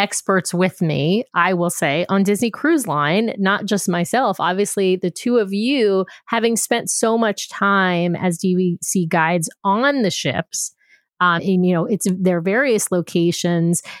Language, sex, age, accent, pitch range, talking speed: English, female, 30-49, American, 180-225 Hz, 160 wpm